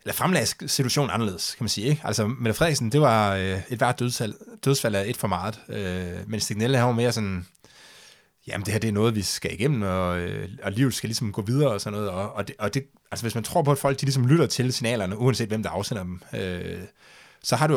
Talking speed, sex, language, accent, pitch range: 250 wpm, male, Danish, native, 100-135 Hz